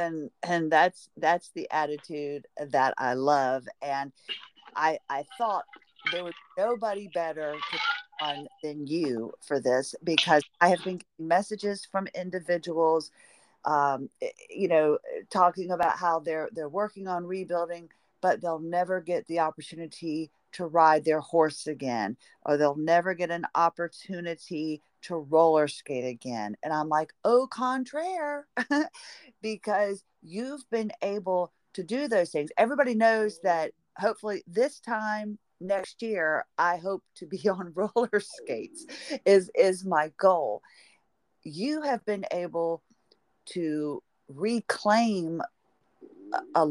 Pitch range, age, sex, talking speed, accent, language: 155-210 Hz, 50-69, female, 130 wpm, American, English